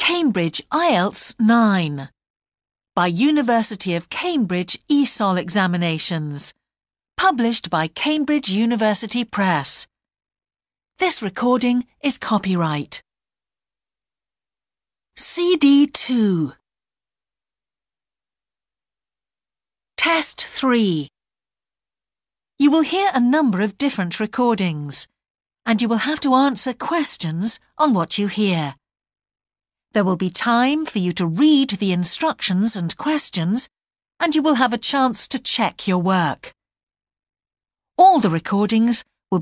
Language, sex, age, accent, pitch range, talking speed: English, female, 50-69, British, 175-260 Hz, 100 wpm